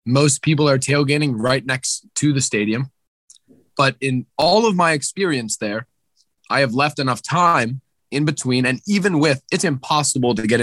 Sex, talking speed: male, 170 wpm